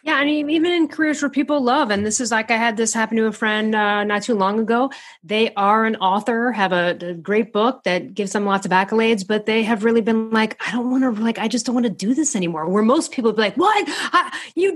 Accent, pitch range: American, 195-255 Hz